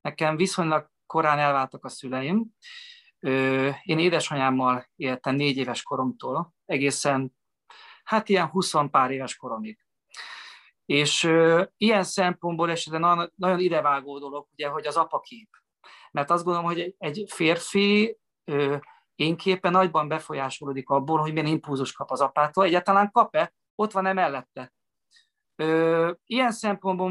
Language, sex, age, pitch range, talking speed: Hungarian, male, 40-59, 145-185 Hz, 125 wpm